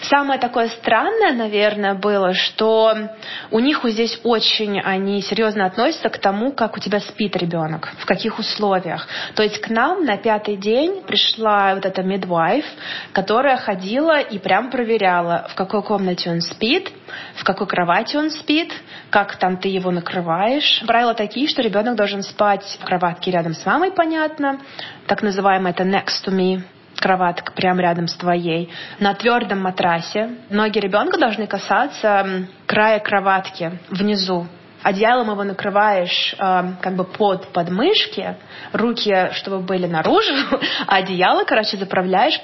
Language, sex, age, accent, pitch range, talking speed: Russian, female, 20-39, native, 190-230 Hz, 145 wpm